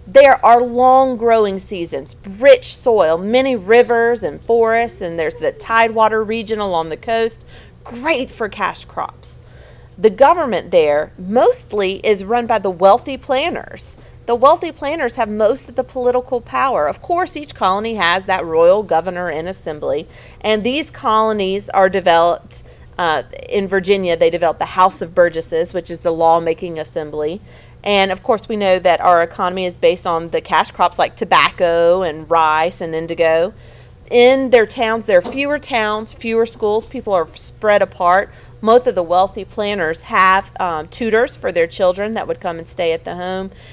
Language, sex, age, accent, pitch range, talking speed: English, female, 40-59, American, 180-245 Hz, 170 wpm